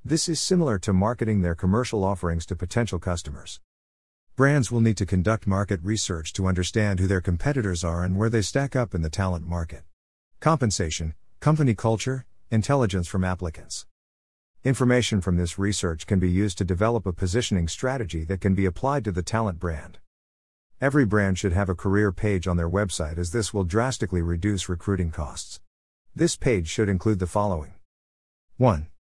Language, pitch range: English, 85-110 Hz